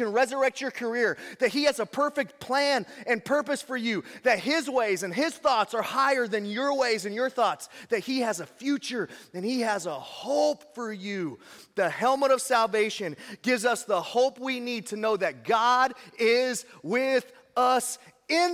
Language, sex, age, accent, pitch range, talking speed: English, male, 30-49, American, 210-270 Hz, 185 wpm